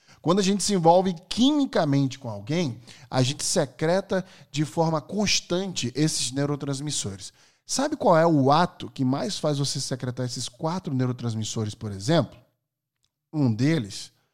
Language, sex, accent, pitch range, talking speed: Portuguese, male, Brazilian, 130-190 Hz, 140 wpm